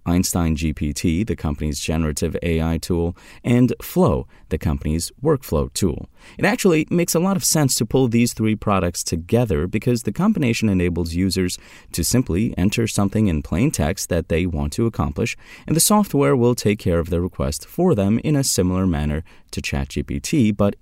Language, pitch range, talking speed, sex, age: English, 80-120 Hz, 175 wpm, male, 30-49